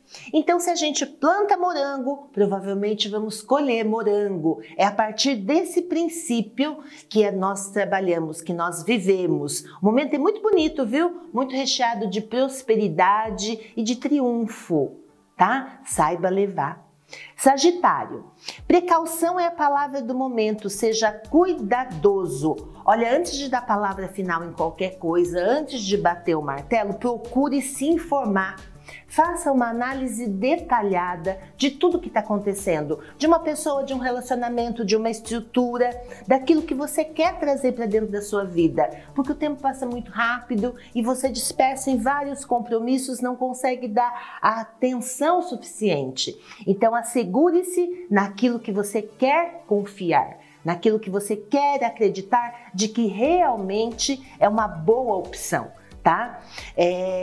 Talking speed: 135 wpm